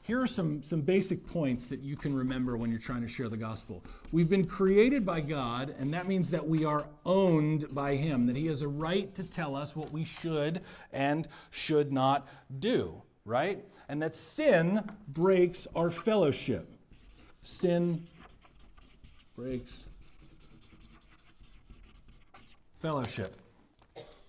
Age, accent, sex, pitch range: 50-69, American, male, 130-180 Hz